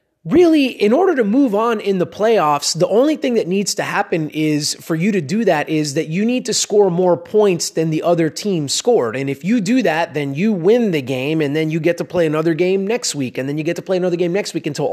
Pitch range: 160-210 Hz